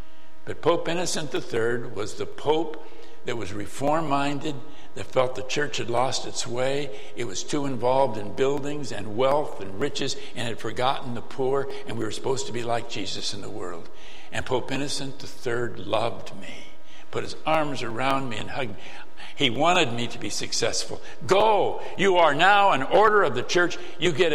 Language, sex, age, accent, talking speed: English, male, 60-79, American, 185 wpm